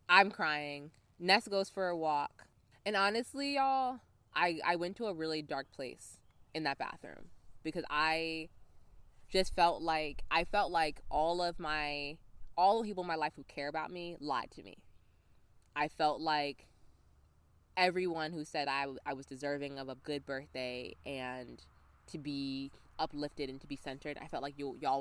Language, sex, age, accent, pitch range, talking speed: English, female, 20-39, American, 115-160 Hz, 175 wpm